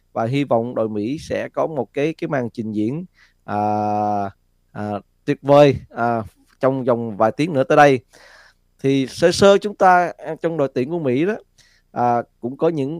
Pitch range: 115-150 Hz